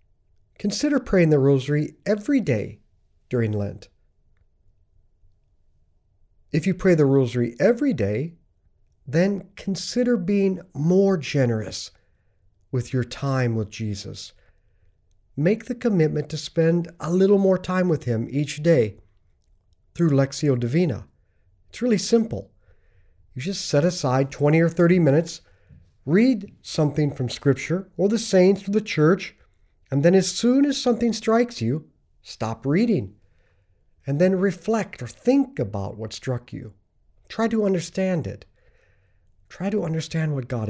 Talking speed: 135 wpm